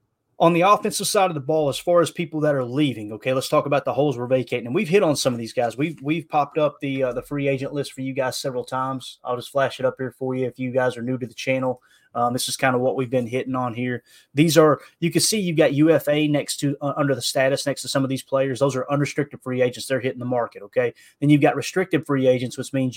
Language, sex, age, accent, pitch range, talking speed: English, male, 20-39, American, 130-155 Hz, 285 wpm